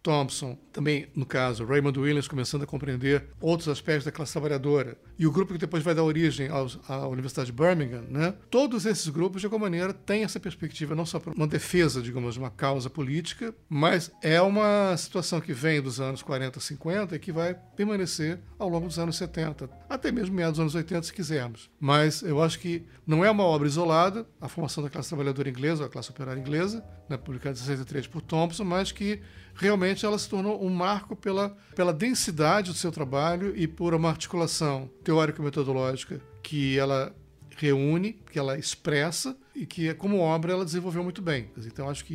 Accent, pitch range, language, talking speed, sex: Brazilian, 140-180 Hz, Portuguese, 195 wpm, male